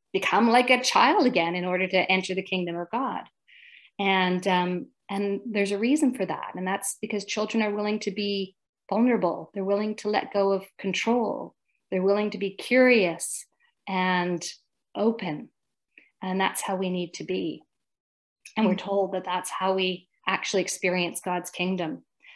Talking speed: 165 wpm